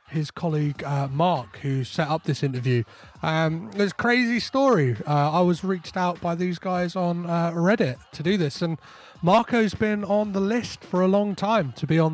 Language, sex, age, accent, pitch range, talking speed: English, male, 30-49, British, 135-185 Hz, 205 wpm